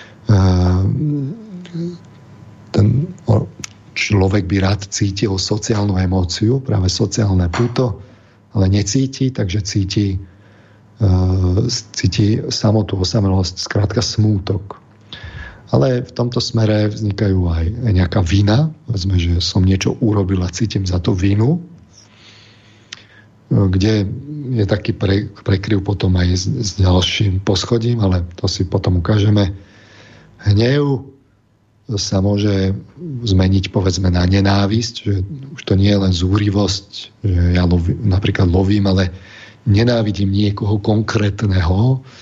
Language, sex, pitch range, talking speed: Slovak, male, 95-110 Hz, 105 wpm